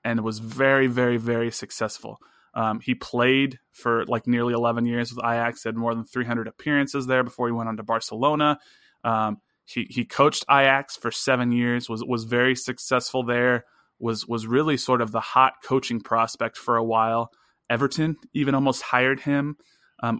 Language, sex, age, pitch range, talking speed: English, male, 20-39, 115-135 Hz, 175 wpm